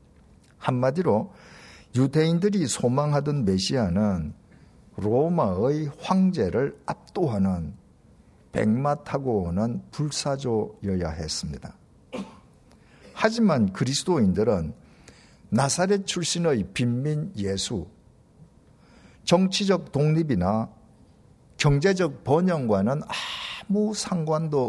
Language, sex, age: Korean, male, 50-69